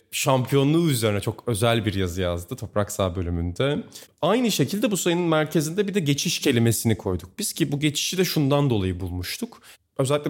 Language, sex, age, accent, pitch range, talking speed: Turkish, male, 30-49, native, 115-145 Hz, 170 wpm